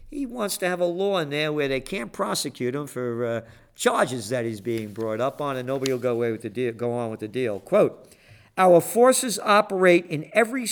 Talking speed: 230 wpm